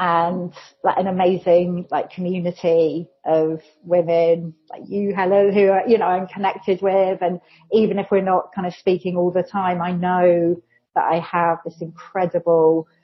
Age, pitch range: 40-59, 160-190 Hz